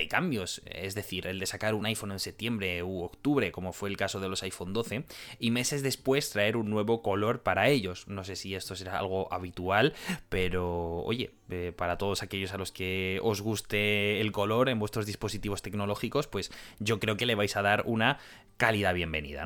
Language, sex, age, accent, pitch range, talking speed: Spanish, male, 20-39, Spanish, 100-130 Hz, 195 wpm